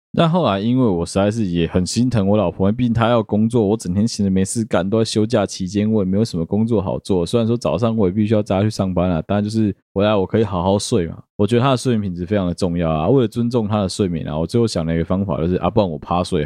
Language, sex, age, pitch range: Chinese, male, 20-39, 85-105 Hz